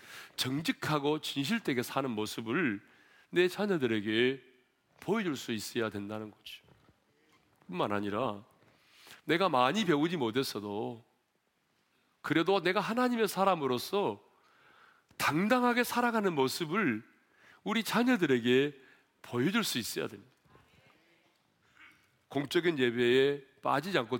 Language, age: Korean, 40-59